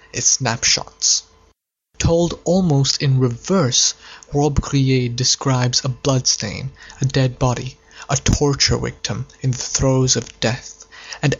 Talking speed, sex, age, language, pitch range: 120 wpm, male, 20-39, English, 120-140 Hz